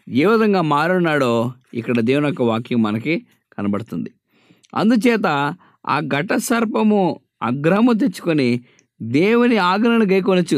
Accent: Indian